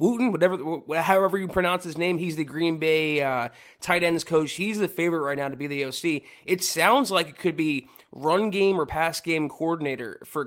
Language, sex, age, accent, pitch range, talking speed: English, male, 20-39, American, 150-185 Hz, 205 wpm